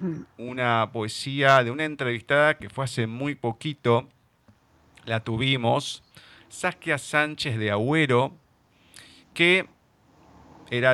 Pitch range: 105-155 Hz